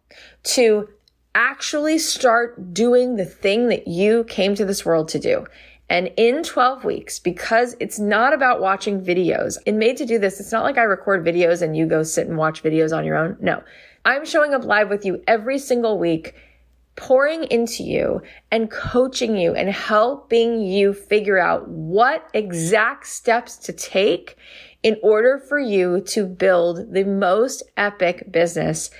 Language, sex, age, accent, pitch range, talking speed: English, female, 20-39, American, 170-230 Hz, 170 wpm